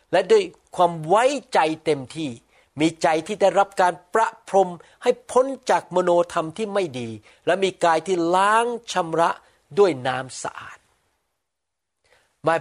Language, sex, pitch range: Thai, male, 135-190 Hz